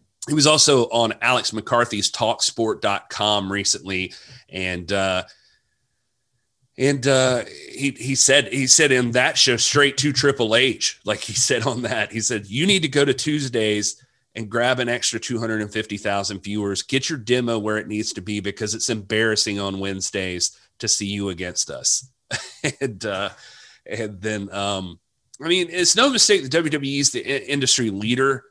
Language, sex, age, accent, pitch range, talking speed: English, male, 30-49, American, 105-135 Hz, 165 wpm